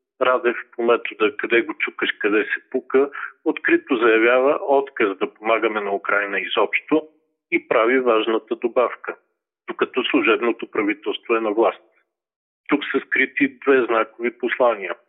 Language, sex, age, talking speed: Bulgarian, male, 40-59, 130 wpm